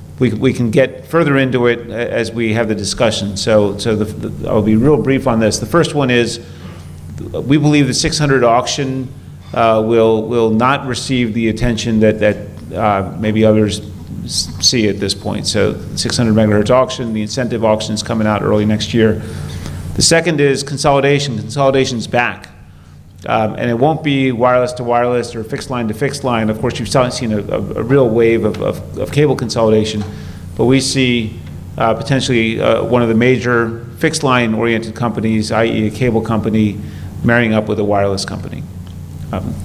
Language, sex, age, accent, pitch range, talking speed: English, male, 40-59, American, 105-125 Hz, 180 wpm